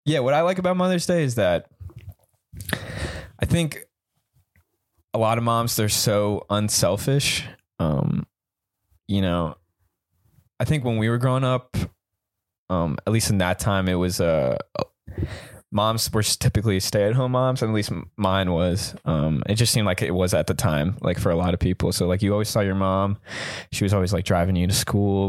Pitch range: 90-115 Hz